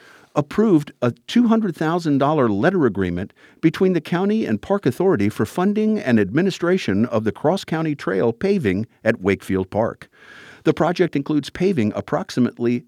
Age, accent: 50-69, American